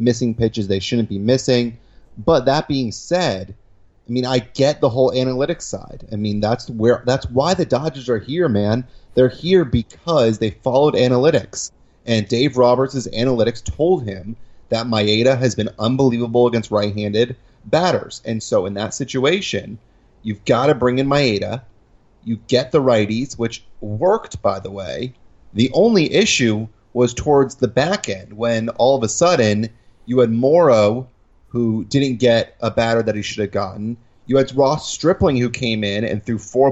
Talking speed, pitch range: 175 wpm, 110-135 Hz